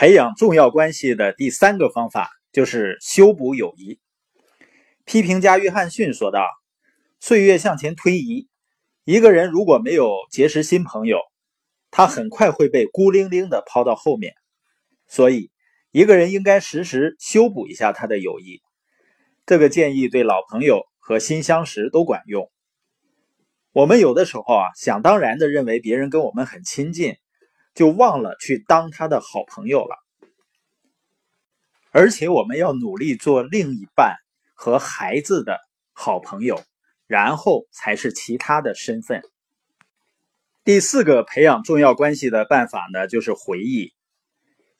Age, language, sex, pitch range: 20-39, Chinese, male, 135-225 Hz